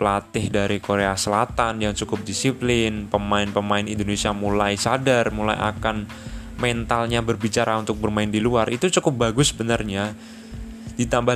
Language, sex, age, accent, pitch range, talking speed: Indonesian, male, 20-39, native, 110-145 Hz, 125 wpm